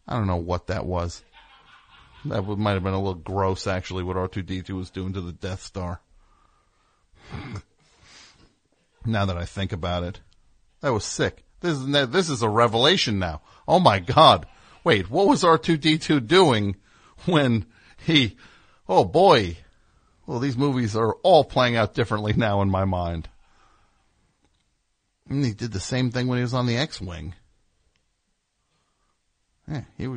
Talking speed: 145 wpm